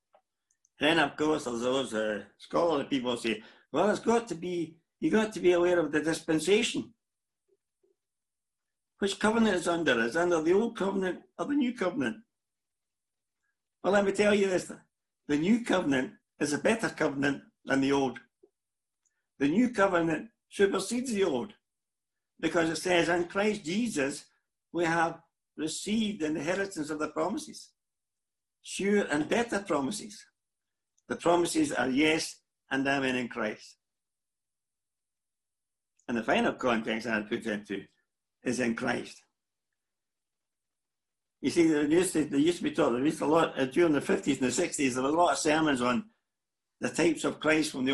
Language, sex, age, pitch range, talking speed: English, male, 60-79, 135-195 Hz, 165 wpm